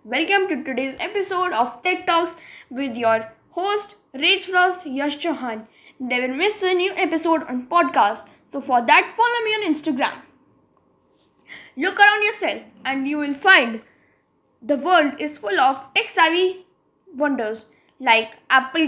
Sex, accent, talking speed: female, Indian, 140 wpm